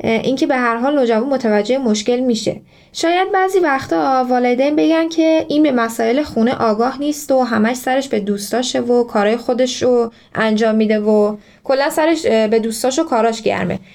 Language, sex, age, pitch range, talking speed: Persian, female, 10-29, 220-285 Hz, 170 wpm